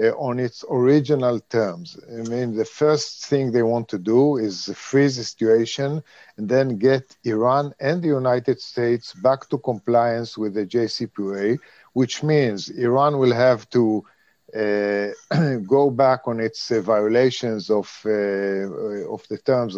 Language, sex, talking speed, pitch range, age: English, male, 150 wpm, 110-135 Hz, 50-69